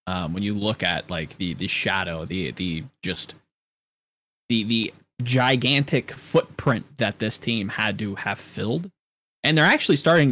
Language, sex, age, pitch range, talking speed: English, male, 20-39, 105-135 Hz, 155 wpm